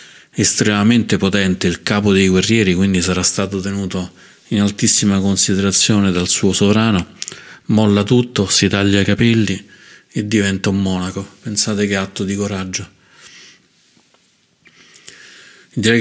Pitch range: 95-110 Hz